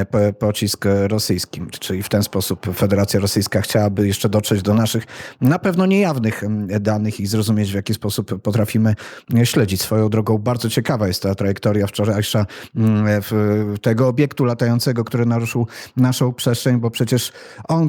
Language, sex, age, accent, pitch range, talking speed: Polish, male, 30-49, native, 105-125 Hz, 145 wpm